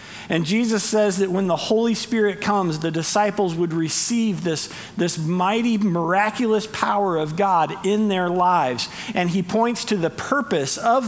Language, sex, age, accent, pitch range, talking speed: English, male, 50-69, American, 165-210 Hz, 165 wpm